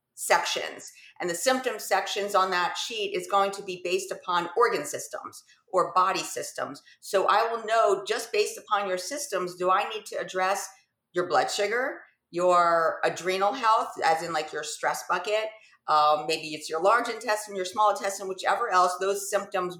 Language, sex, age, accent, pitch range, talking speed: English, female, 40-59, American, 180-220 Hz, 175 wpm